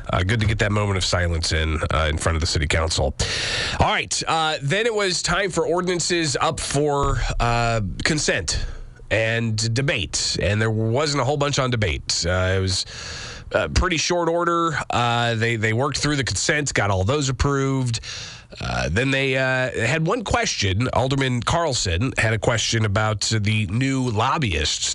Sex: male